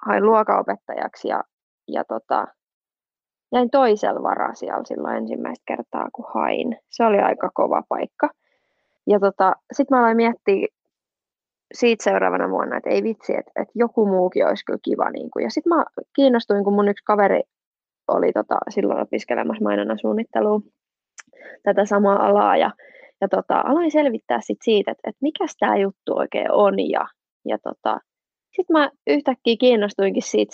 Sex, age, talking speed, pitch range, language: female, 20-39, 155 wpm, 195-240 Hz, Finnish